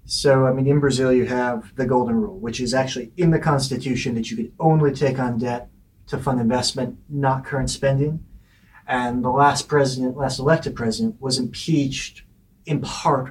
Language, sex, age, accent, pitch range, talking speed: English, male, 30-49, American, 120-140 Hz, 180 wpm